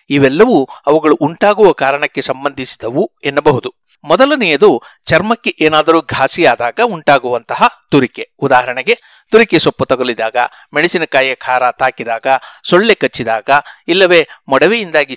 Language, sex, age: Kannada, male, 60-79